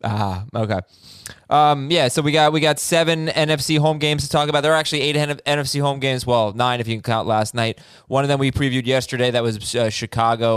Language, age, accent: English, 20-39, American